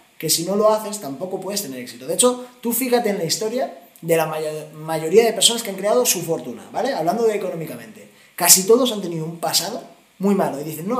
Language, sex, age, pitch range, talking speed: Spanish, male, 20-39, 165-225 Hz, 225 wpm